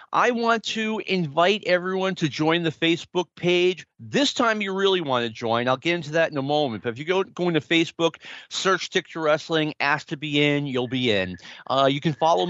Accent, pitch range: American, 140-185 Hz